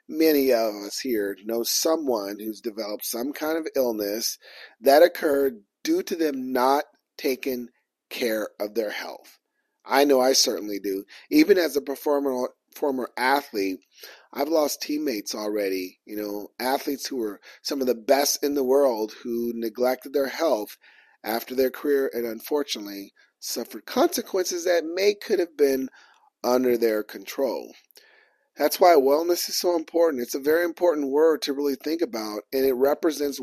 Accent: American